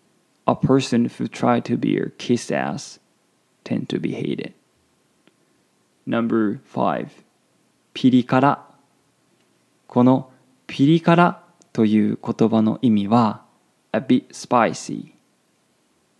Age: 20-39